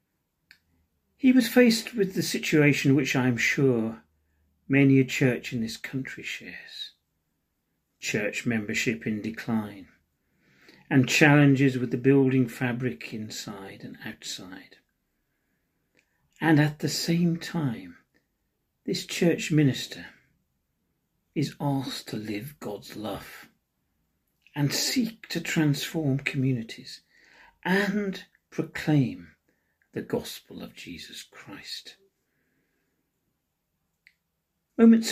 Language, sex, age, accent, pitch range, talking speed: English, male, 40-59, British, 115-170 Hz, 95 wpm